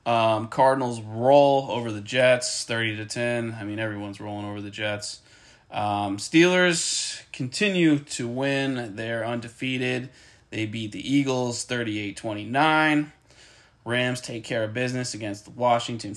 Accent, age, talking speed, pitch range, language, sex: American, 20-39, 135 wpm, 110-135 Hz, English, male